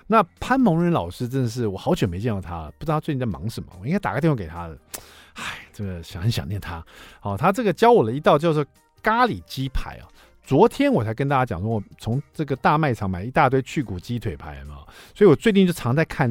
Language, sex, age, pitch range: Chinese, male, 50-69, 105-180 Hz